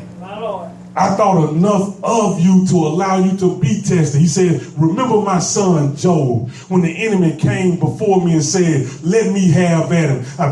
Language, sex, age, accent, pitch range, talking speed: English, male, 30-49, American, 150-180 Hz, 175 wpm